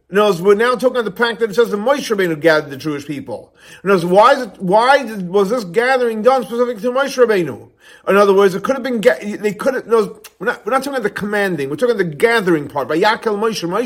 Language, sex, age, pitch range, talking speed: English, male, 40-59, 175-240 Hz, 245 wpm